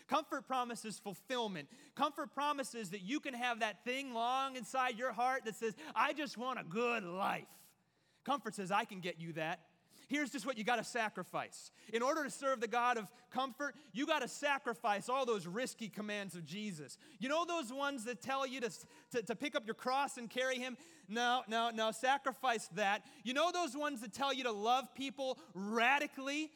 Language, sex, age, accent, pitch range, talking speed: English, male, 30-49, American, 225-275 Hz, 195 wpm